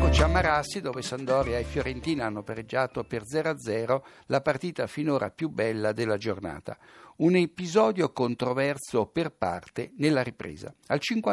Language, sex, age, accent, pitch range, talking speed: Italian, male, 60-79, native, 115-150 Hz, 125 wpm